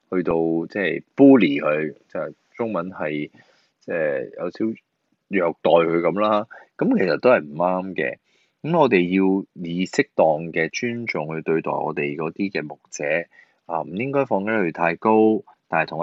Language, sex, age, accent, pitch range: Chinese, male, 20-39, native, 80-105 Hz